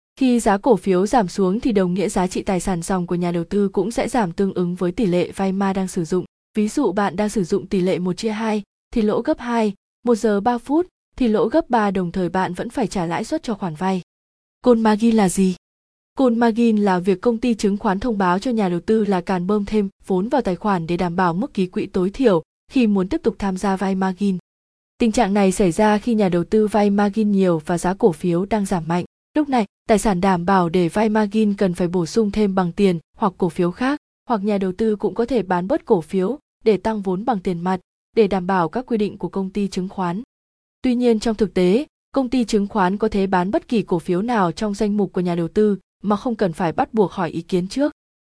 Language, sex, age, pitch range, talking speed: Vietnamese, female, 20-39, 185-225 Hz, 260 wpm